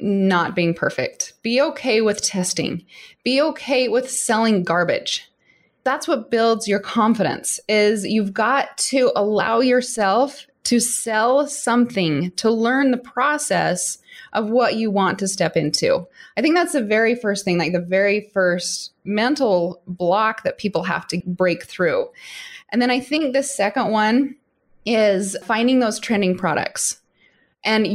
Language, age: English, 20-39